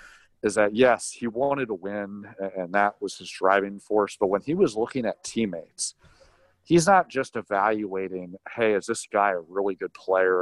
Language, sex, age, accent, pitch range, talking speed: English, male, 40-59, American, 95-115 Hz, 185 wpm